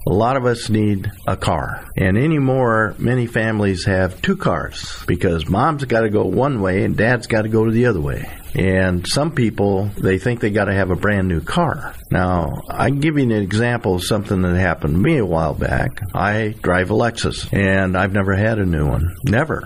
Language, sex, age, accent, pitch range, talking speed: English, male, 50-69, American, 90-115 Hz, 215 wpm